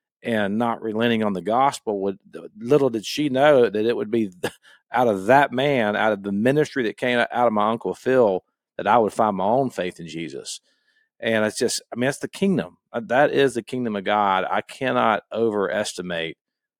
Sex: male